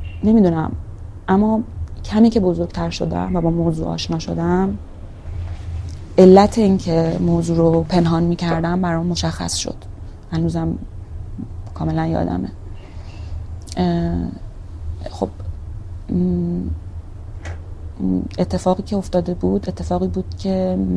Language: Persian